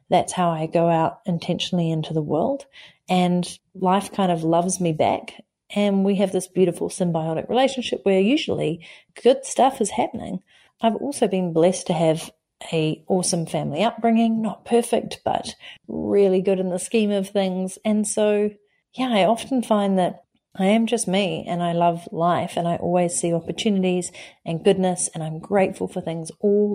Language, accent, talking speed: English, Australian, 175 wpm